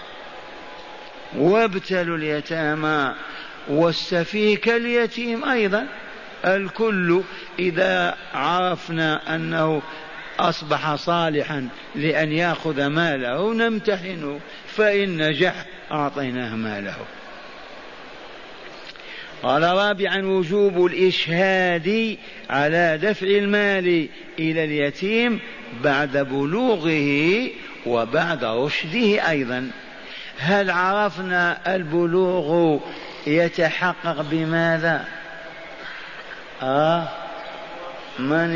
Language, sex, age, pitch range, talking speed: Arabic, male, 50-69, 155-185 Hz, 60 wpm